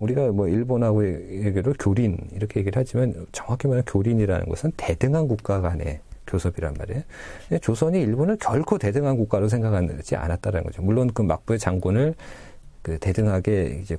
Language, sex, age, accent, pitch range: Korean, male, 40-59, native, 90-120 Hz